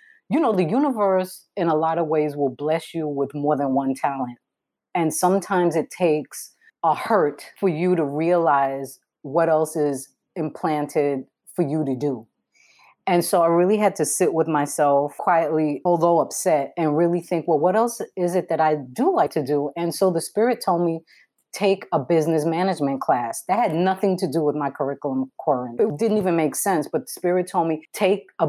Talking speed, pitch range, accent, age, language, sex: 195 wpm, 150-180 Hz, American, 30-49, English, female